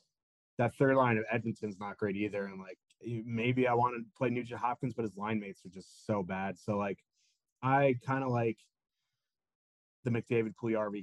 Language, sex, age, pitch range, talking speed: English, male, 30-49, 105-120 Hz, 185 wpm